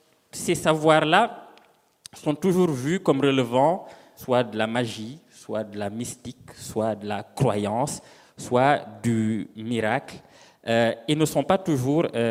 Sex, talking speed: male, 130 wpm